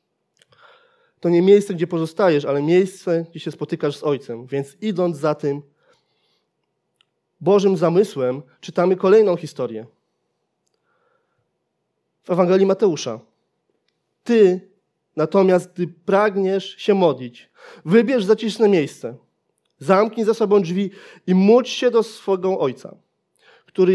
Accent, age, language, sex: native, 30-49, Polish, male